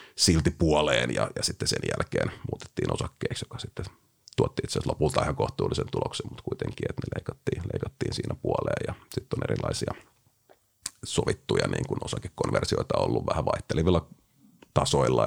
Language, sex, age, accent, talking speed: Finnish, male, 30-49, native, 140 wpm